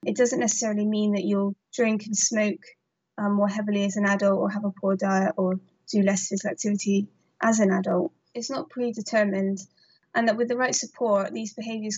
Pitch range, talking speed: 195-220 Hz, 195 wpm